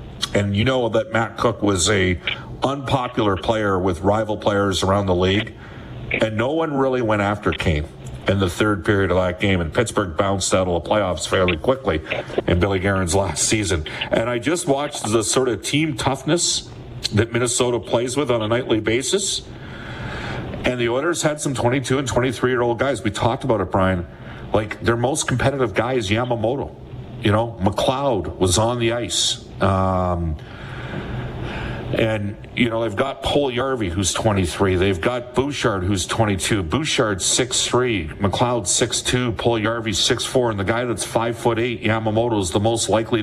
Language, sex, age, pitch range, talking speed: English, male, 50-69, 100-125 Hz, 170 wpm